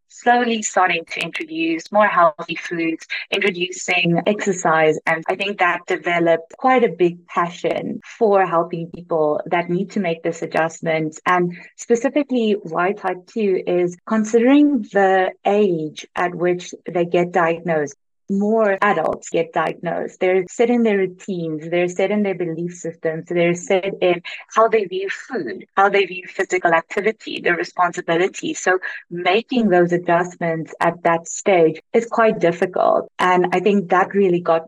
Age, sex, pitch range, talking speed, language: 30-49, female, 170-205 Hz, 150 wpm, English